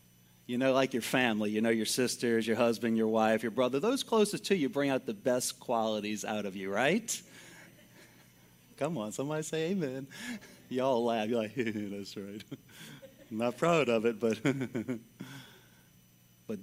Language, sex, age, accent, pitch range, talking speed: English, male, 40-59, American, 115-160 Hz, 170 wpm